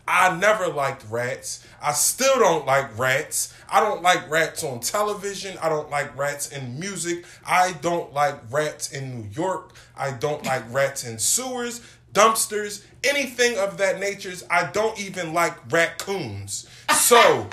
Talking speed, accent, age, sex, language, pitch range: 155 wpm, American, 20-39, male, English, 125-175 Hz